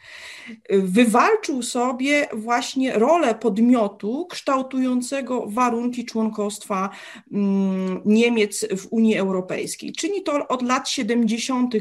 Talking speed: 85 wpm